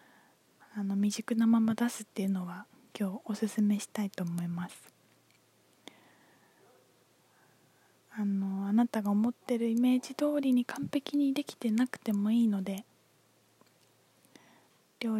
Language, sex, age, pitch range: Japanese, female, 20-39, 205-245 Hz